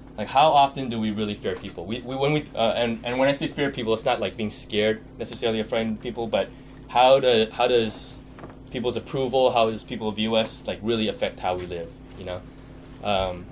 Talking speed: 220 wpm